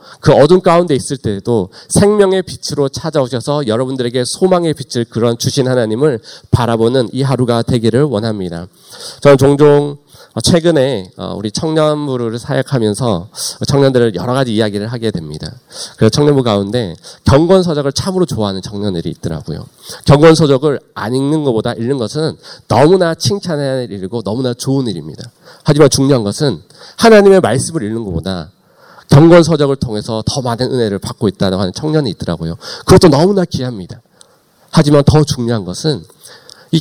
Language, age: Korean, 40-59